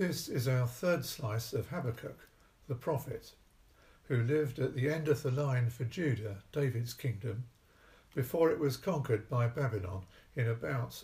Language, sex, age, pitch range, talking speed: English, male, 60-79, 110-140 Hz, 160 wpm